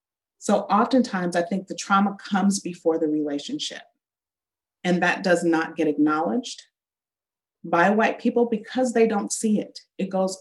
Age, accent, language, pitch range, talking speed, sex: 40-59, American, English, 165-220 Hz, 150 wpm, female